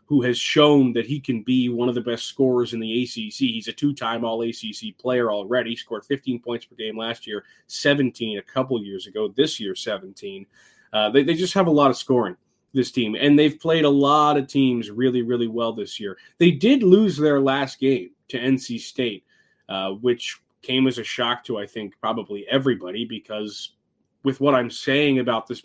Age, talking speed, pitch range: 20-39, 200 wpm, 120-145 Hz